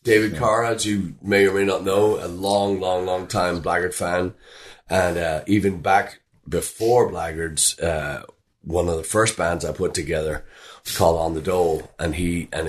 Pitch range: 80-100 Hz